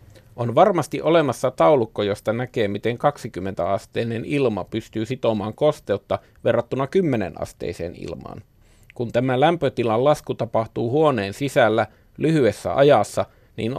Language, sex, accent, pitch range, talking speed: Finnish, male, native, 110-140 Hz, 110 wpm